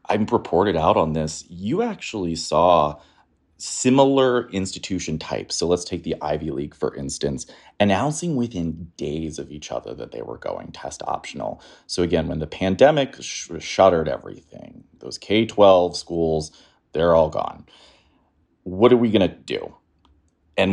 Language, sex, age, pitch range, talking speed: English, male, 30-49, 80-110 Hz, 150 wpm